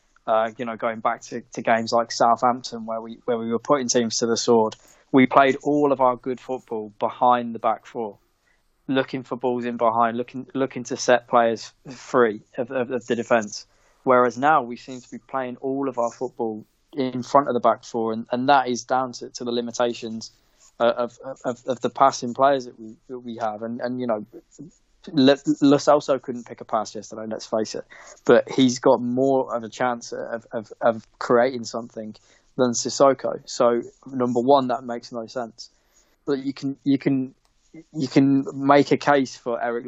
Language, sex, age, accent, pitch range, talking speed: English, male, 20-39, British, 115-130 Hz, 200 wpm